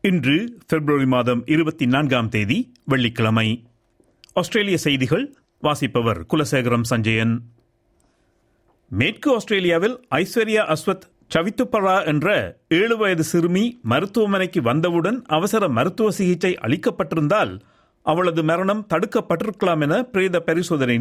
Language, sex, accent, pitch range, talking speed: Tamil, male, native, 145-215 Hz, 85 wpm